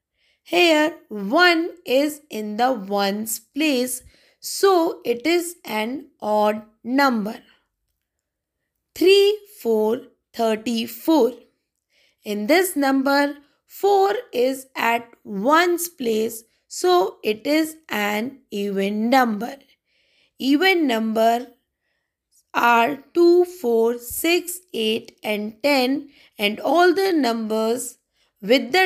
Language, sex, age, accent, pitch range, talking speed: English, female, 20-39, Indian, 225-315 Hz, 95 wpm